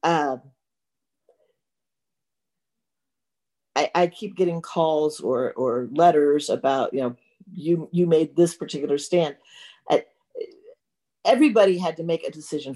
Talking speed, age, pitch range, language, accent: 120 wpm, 50-69, 140-185 Hz, English, American